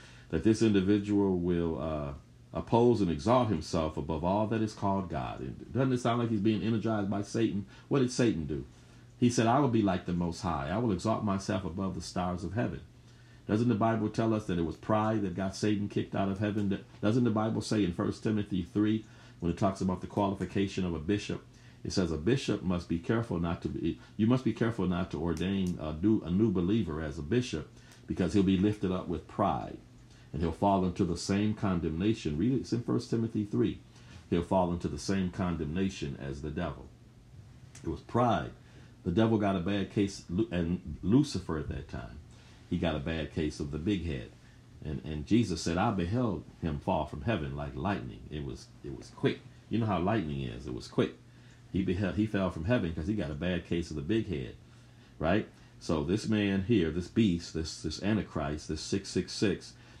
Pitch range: 85-110 Hz